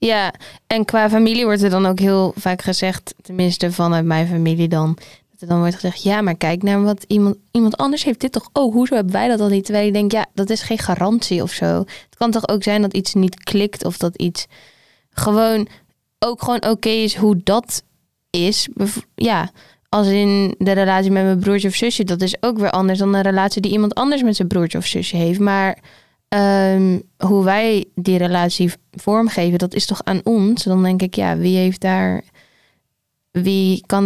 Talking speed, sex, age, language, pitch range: 210 wpm, female, 20-39, Dutch, 185-220 Hz